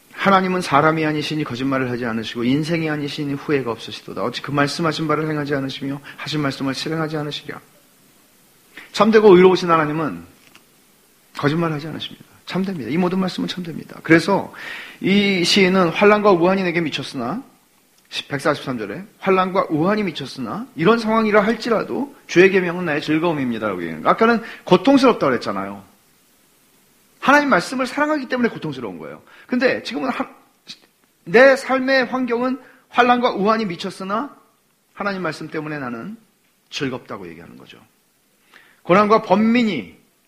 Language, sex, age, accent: English, male, 40-59, Korean